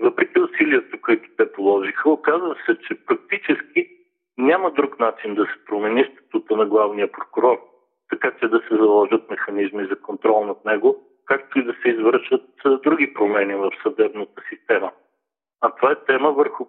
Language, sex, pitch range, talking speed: Bulgarian, male, 275-420 Hz, 160 wpm